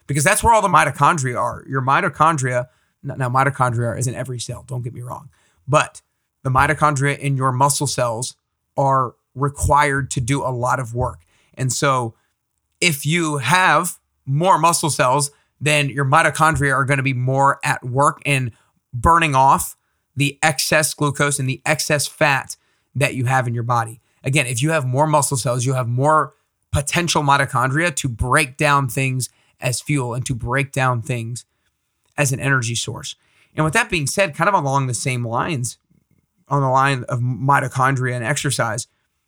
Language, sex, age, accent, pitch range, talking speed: English, male, 30-49, American, 125-150 Hz, 170 wpm